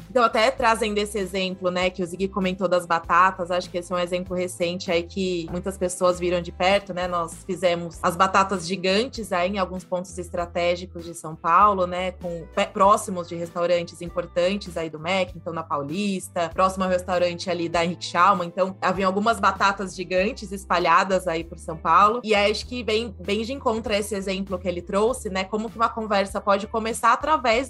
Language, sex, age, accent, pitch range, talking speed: English, female, 20-39, Brazilian, 180-215 Hz, 195 wpm